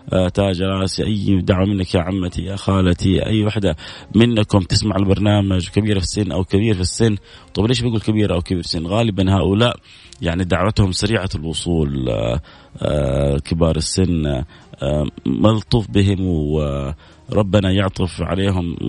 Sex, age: male, 30-49